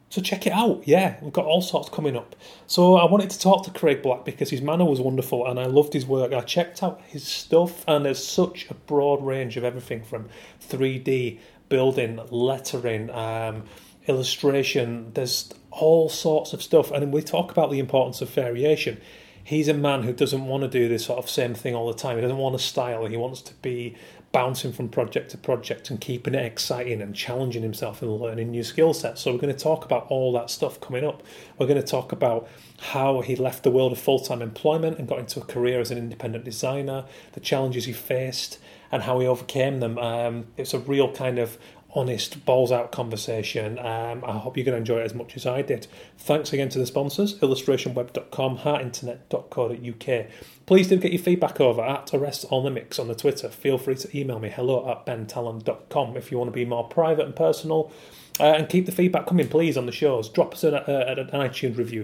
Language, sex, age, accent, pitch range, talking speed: English, male, 30-49, British, 120-145 Hz, 215 wpm